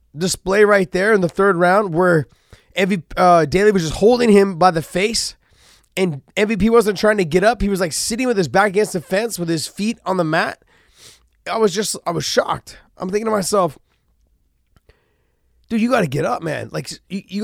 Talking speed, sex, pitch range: 205 wpm, male, 170-215 Hz